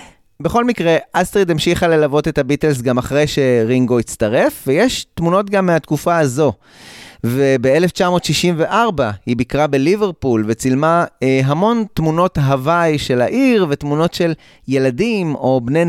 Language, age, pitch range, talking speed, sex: Hebrew, 30-49, 135-180 Hz, 120 wpm, male